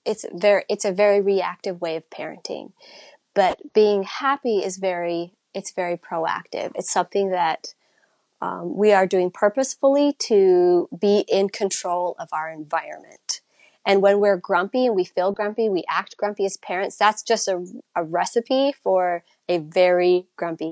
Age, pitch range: 30-49, 180-215 Hz